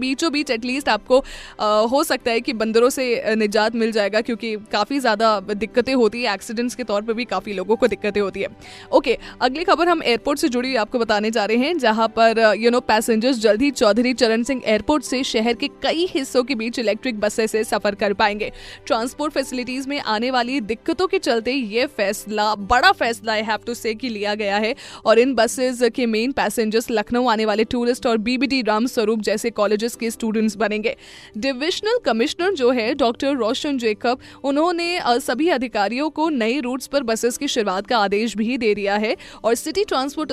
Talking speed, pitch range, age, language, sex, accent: 195 wpm, 215-275 Hz, 20-39, Hindi, female, native